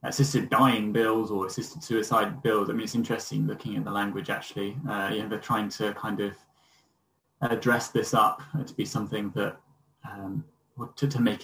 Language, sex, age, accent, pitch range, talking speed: English, male, 10-29, British, 105-125 Hz, 185 wpm